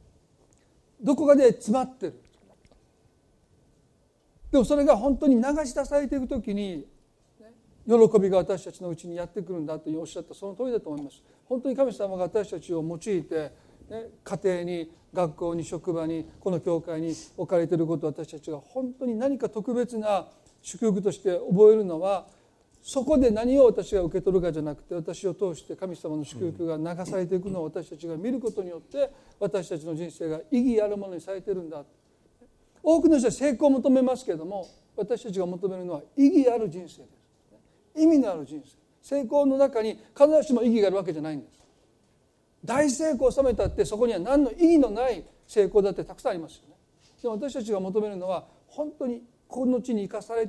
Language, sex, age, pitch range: Japanese, male, 40-59, 175-260 Hz